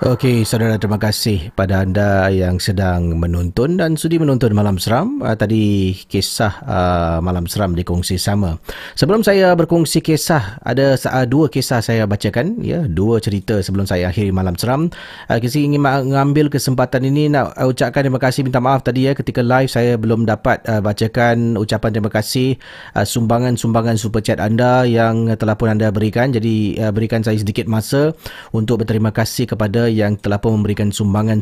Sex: male